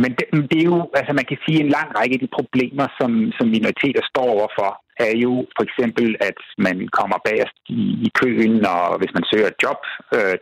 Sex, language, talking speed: male, Danish, 230 wpm